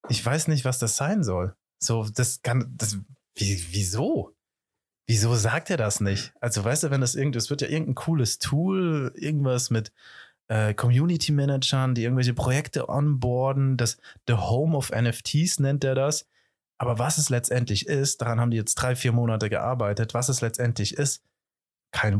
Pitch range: 105-135 Hz